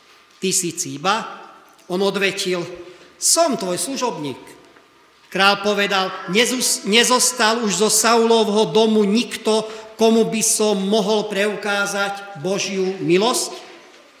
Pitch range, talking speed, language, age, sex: 185-220 Hz, 100 wpm, Slovak, 40-59, male